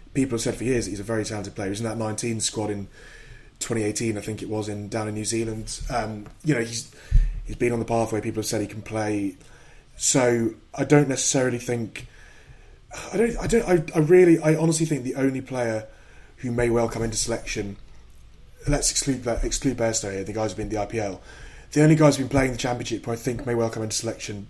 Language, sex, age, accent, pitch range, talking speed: English, male, 20-39, British, 110-130 Hz, 230 wpm